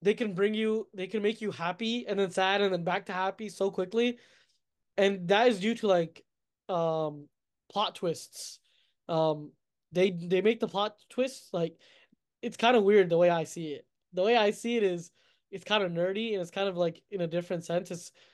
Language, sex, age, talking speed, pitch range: English, male, 20-39, 210 wpm, 180-225 Hz